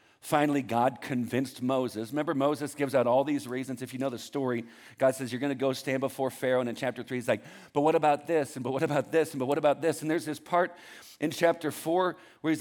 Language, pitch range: English, 115-165 Hz